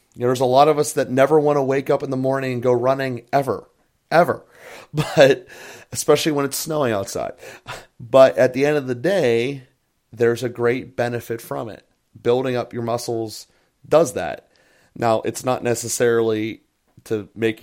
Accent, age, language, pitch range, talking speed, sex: American, 30-49, English, 110-135 Hz, 170 wpm, male